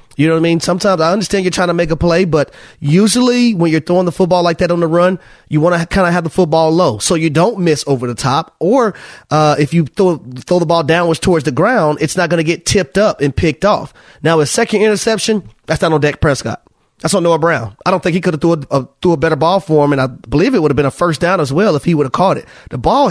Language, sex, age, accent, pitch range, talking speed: English, male, 30-49, American, 155-205 Hz, 290 wpm